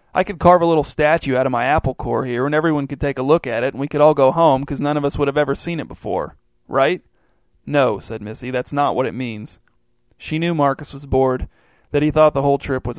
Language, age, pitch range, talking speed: English, 40-59, 130-145 Hz, 265 wpm